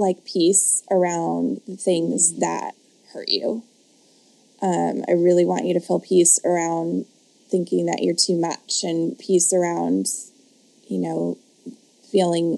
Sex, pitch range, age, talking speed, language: female, 175-255 Hz, 20-39, 135 wpm, English